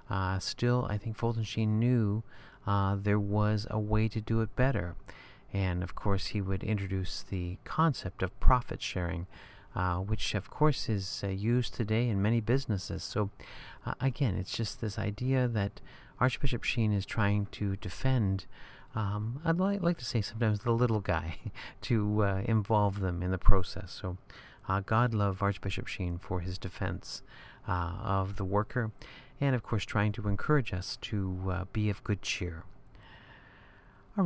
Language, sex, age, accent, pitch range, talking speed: English, male, 40-59, American, 95-115 Hz, 170 wpm